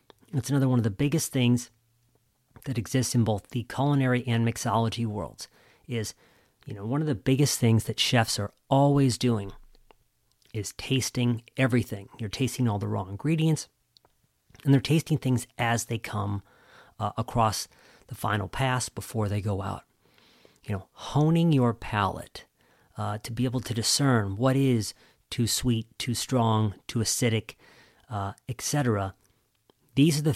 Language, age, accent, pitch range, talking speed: English, 40-59, American, 105-130 Hz, 155 wpm